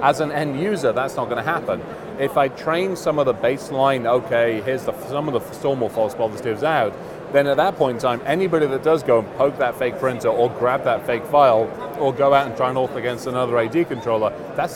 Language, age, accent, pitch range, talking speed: English, 30-49, British, 125-165 Hz, 230 wpm